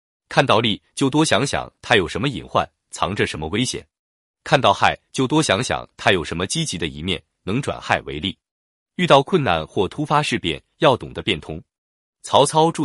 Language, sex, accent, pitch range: Chinese, male, native, 95-150 Hz